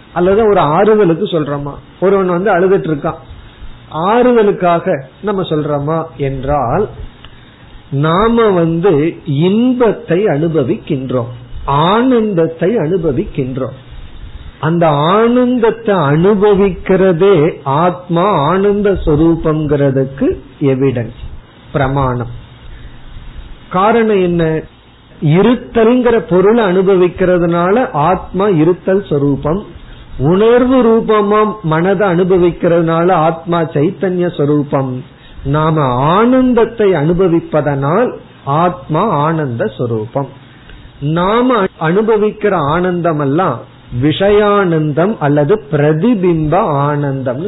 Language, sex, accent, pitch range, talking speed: Tamil, male, native, 145-195 Hz, 65 wpm